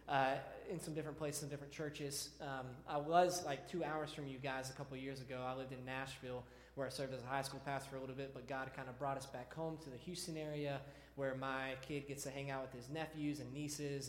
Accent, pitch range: American, 130-155 Hz